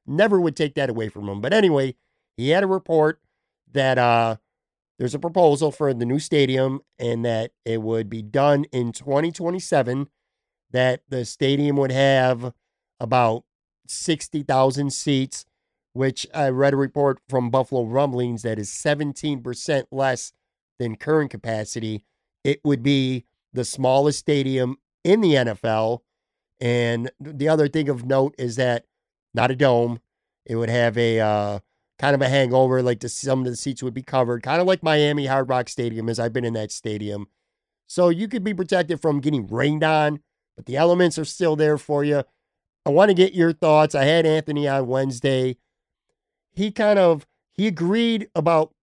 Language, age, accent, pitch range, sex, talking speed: English, 50-69, American, 125-150 Hz, male, 170 wpm